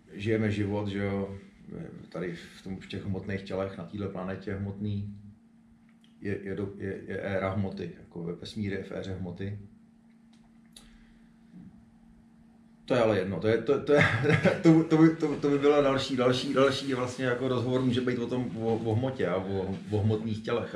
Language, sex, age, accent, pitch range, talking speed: Czech, male, 30-49, native, 100-150 Hz, 180 wpm